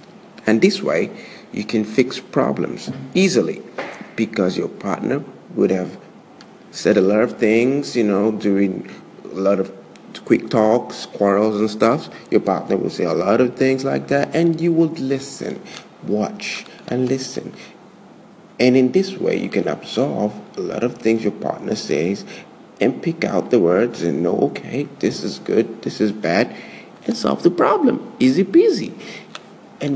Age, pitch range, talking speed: 50-69, 110-145 Hz, 160 wpm